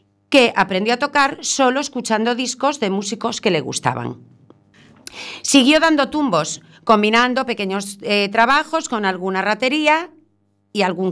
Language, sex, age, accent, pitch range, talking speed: Spanish, female, 40-59, Spanish, 190-275 Hz, 130 wpm